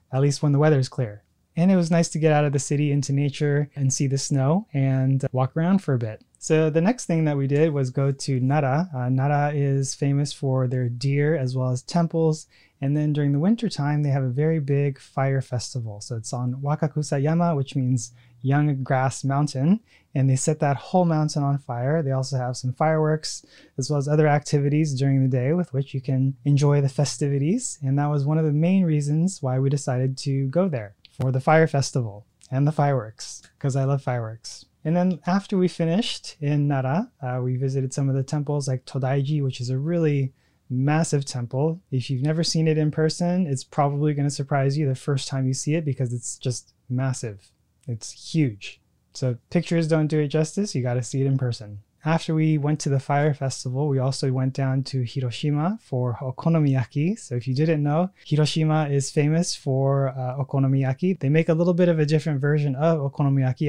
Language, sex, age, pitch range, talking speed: English, male, 20-39, 130-155 Hz, 210 wpm